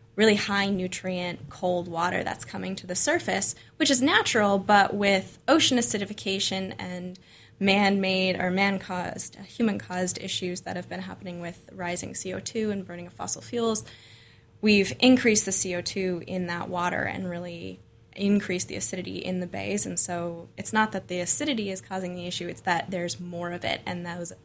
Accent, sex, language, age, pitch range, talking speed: American, female, English, 10-29, 180-210 Hz, 170 wpm